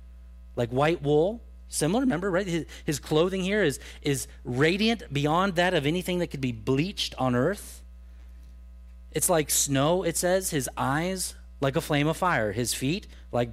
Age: 30-49